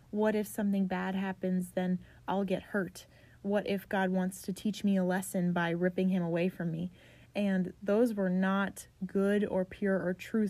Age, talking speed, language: 30-49, 190 wpm, English